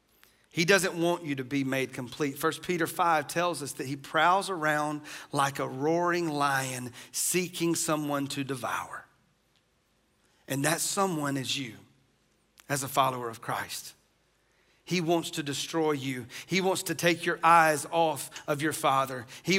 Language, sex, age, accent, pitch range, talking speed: English, male, 40-59, American, 150-195 Hz, 155 wpm